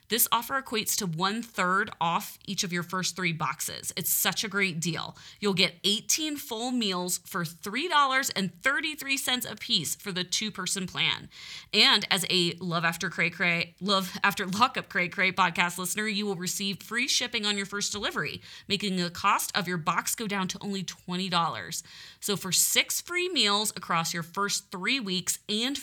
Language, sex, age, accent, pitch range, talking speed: English, female, 30-49, American, 175-215 Hz, 175 wpm